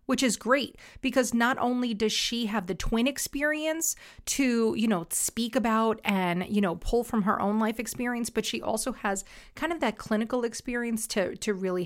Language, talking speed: English, 190 wpm